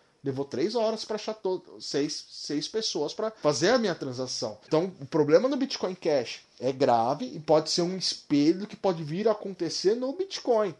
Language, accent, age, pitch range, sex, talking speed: Portuguese, Brazilian, 20-39, 150-225 Hz, male, 190 wpm